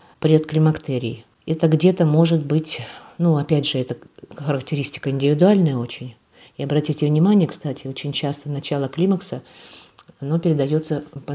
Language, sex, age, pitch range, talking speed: Russian, female, 40-59, 140-165 Hz, 120 wpm